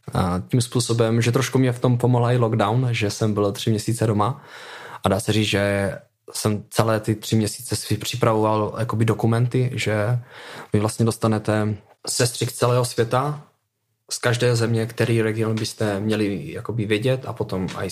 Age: 20-39